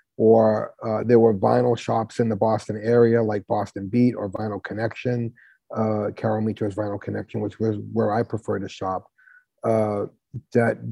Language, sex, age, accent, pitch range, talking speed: English, male, 40-59, American, 110-125 Hz, 165 wpm